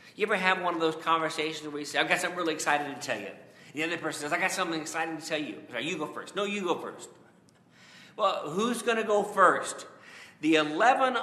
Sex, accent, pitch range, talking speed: male, American, 145-180 Hz, 240 wpm